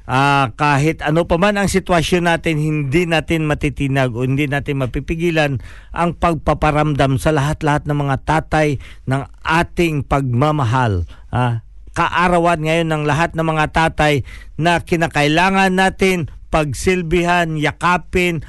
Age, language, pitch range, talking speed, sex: 50-69, Filipino, 140-170 Hz, 120 wpm, male